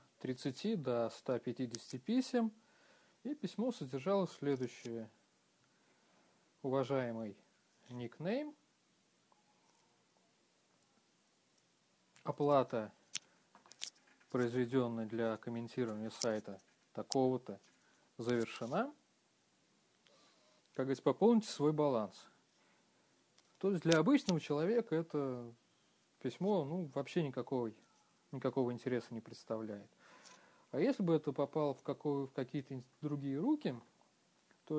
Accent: native